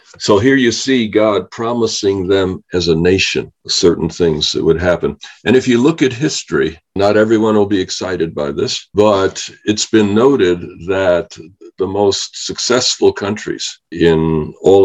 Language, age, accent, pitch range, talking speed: English, 60-79, American, 90-110 Hz, 160 wpm